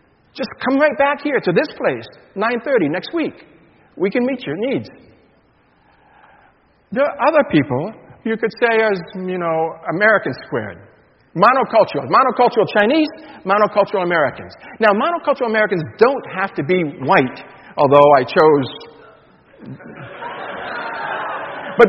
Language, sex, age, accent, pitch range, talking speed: English, male, 50-69, American, 155-220 Hz, 125 wpm